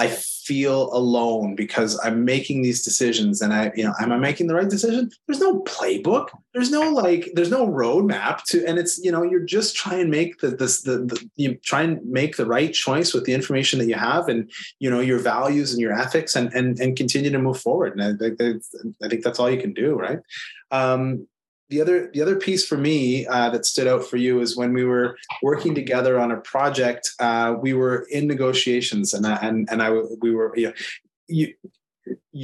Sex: male